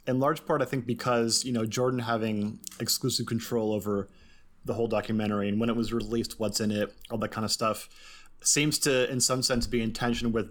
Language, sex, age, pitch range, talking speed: English, male, 30-49, 100-120 Hz, 215 wpm